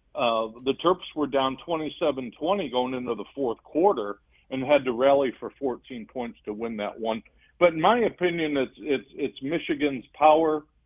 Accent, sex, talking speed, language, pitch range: American, male, 170 wpm, English, 120-145 Hz